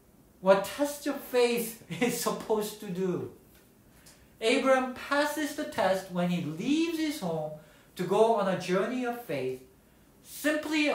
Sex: male